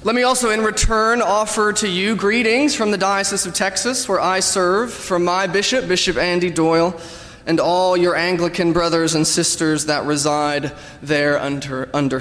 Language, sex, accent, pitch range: English, male, American, 140-180 Hz